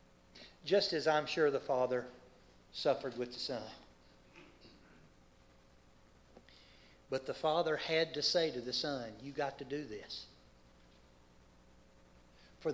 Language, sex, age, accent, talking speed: English, male, 50-69, American, 120 wpm